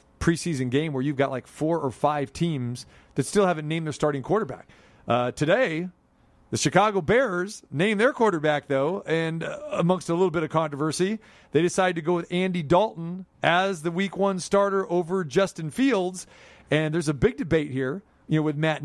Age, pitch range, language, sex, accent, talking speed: 40-59, 145-180 Hz, English, male, American, 190 wpm